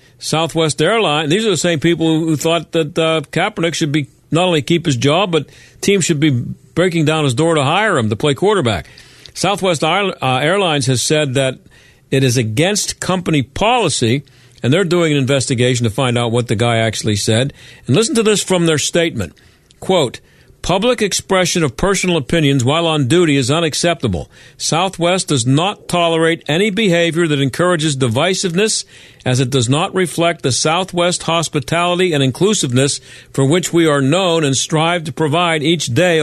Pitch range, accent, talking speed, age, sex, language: 135-175 Hz, American, 170 wpm, 50-69, male, English